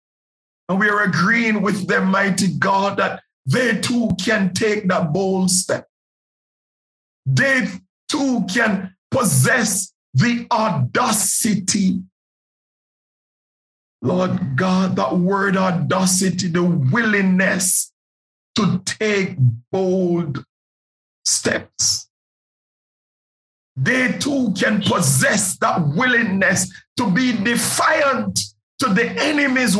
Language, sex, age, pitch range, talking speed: English, male, 50-69, 185-235 Hz, 90 wpm